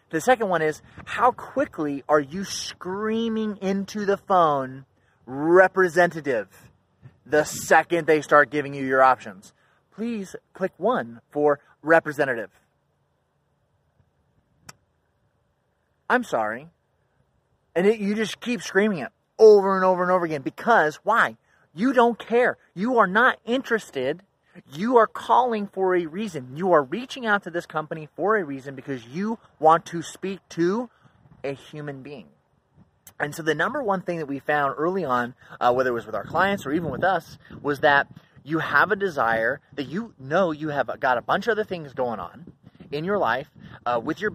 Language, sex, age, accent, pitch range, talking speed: English, male, 30-49, American, 140-200 Hz, 165 wpm